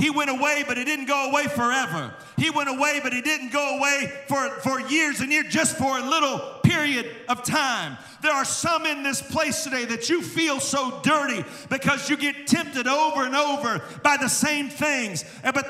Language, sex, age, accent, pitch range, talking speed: English, male, 50-69, American, 260-300 Hz, 205 wpm